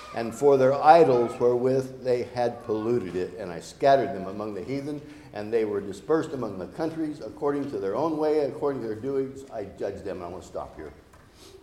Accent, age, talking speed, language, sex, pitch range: American, 60-79, 215 wpm, English, male, 100-130 Hz